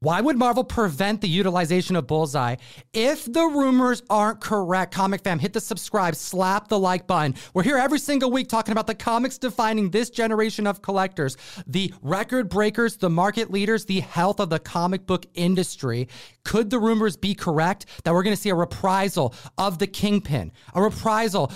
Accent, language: American, English